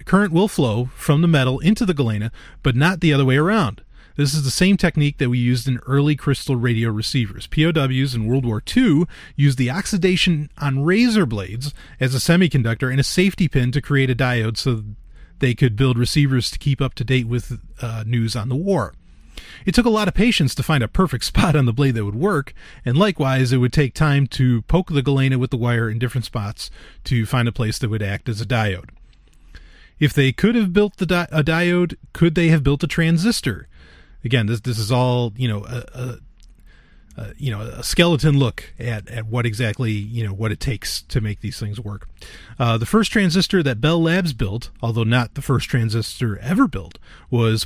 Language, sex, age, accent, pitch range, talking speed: English, male, 30-49, American, 120-160 Hz, 205 wpm